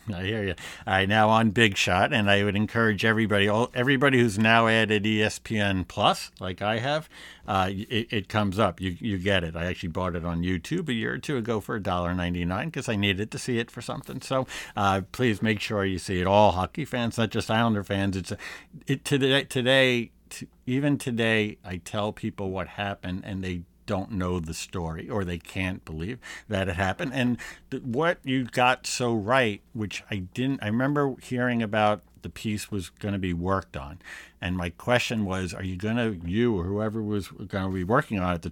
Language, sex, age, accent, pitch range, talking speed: English, male, 50-69, American, 95-125 Hz, 210 wpm